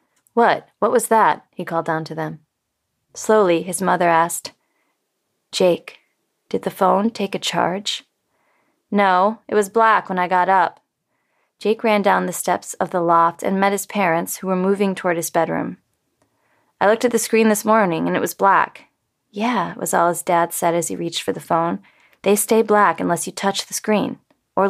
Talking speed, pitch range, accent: 190 wpm, 170-215 Hz, American